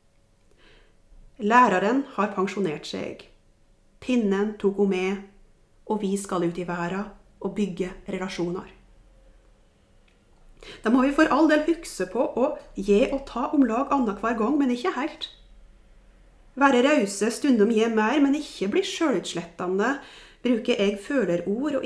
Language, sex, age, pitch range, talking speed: Danish, female, 30-49, 195-270 Hz, 125 wpm